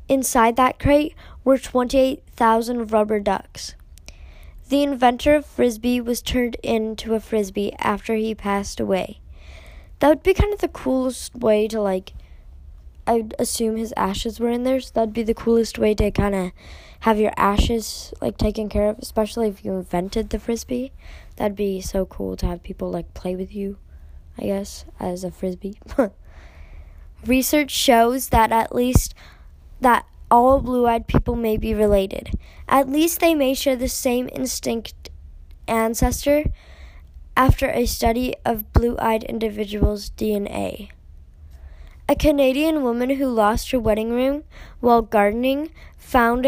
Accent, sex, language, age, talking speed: American, female, English, 20-39, 150 wpm